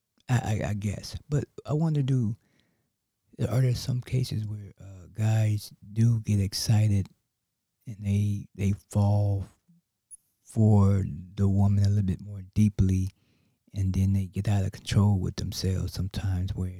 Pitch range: 95-115 Hz